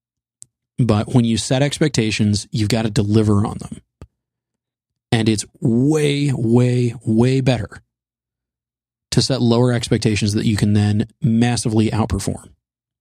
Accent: American